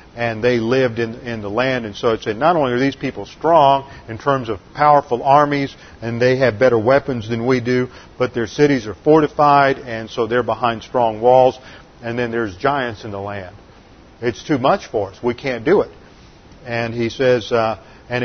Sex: male